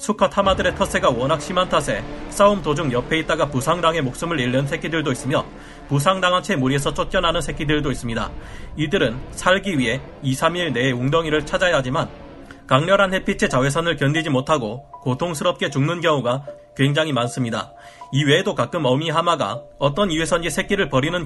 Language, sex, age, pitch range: Korean, male, 30-49, 130-175 Hz